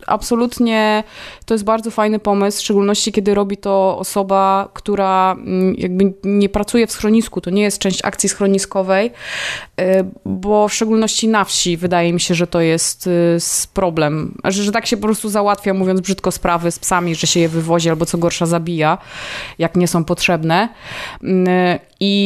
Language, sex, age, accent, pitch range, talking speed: Polish, female, 20-39, native, 185-220 Hz, 165 wpm